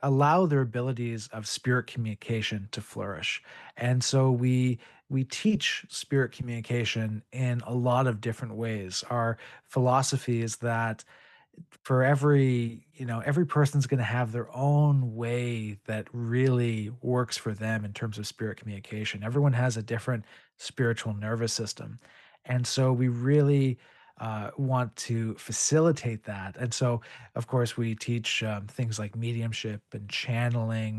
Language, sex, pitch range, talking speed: English, male, 110-130 Hz, 145 wpm